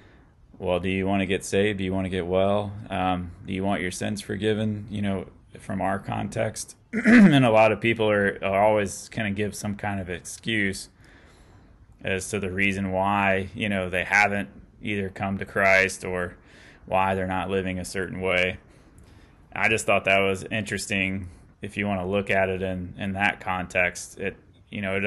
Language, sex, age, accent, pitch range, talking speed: English, male, 20-39, American, 95-105 Hz, 195 wpm